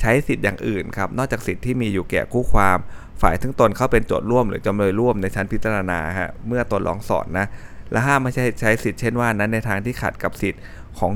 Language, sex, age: Thai, male, 20-39